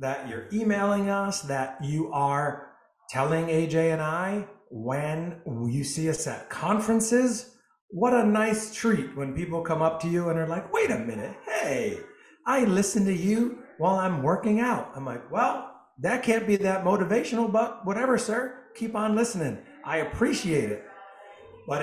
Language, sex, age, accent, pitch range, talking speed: English, male, 50-69, American, 150-220 Hz, 165 wpm